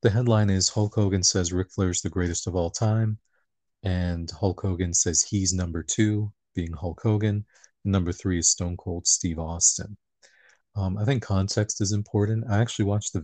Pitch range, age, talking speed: 90-105 Hz, 40-59, 190 wpm